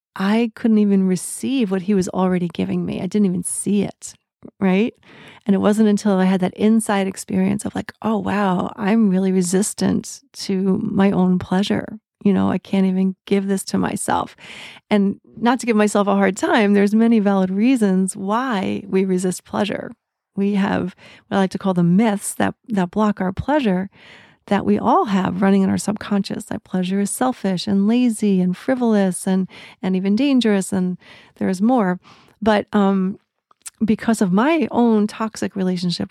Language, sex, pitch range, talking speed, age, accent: English, female, 190-215 Hz, 180 wpm, 40-59, American